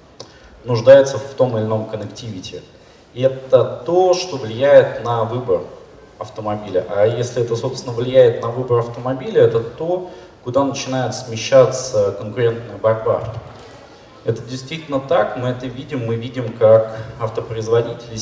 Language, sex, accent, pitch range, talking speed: Russian, male, native, 115-155 Hz, 130 wpm